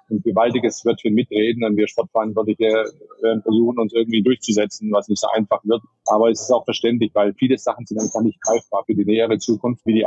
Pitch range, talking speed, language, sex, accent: 105-120 Hz, 210 wpm, German, male, German